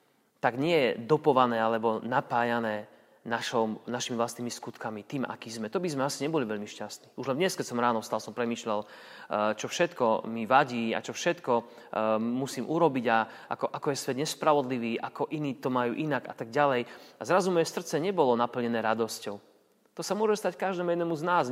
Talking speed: 185 wpm